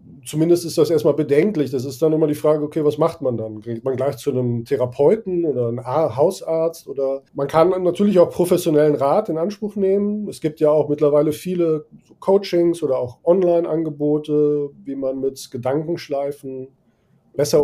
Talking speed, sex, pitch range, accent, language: 170 wpm, male, 140-165 Hz, German, German